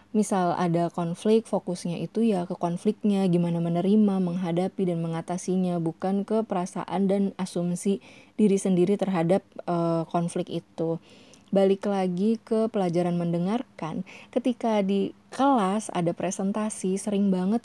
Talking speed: 120 wpm